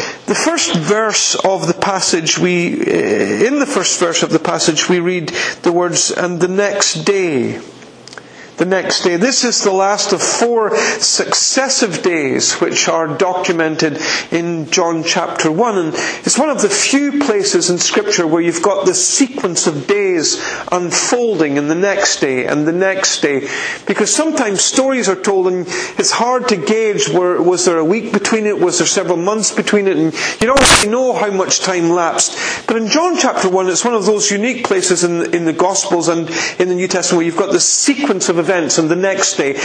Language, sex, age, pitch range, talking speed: English, male, 50-69, 175-225 Hz, 190 wpm